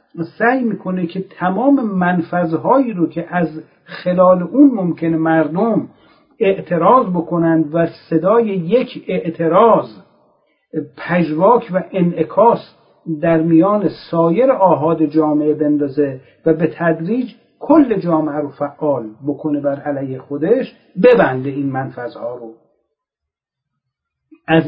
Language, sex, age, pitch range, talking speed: Persian, male, 50-69, 160-210 Hz, 105 wpm